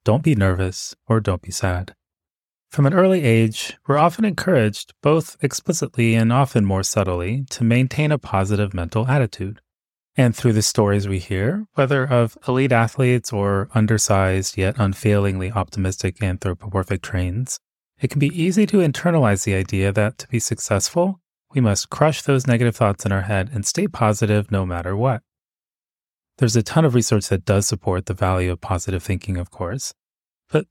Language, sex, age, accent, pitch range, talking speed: English, male, 30-49, American, 95-130 Hz, 170 wpm